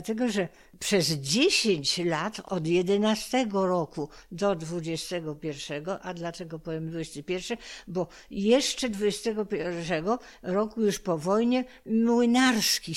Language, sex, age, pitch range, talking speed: Polish, female, 60-79, 175-220 Hz, 100 wpm